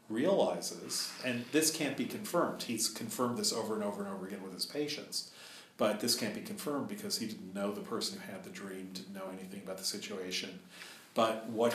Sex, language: male, English